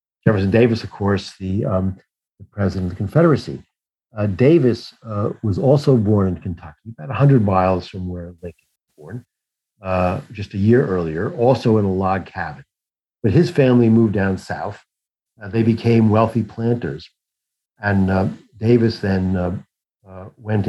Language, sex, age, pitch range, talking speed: English, male, 50-69, 95-125 Hz, 155 wpm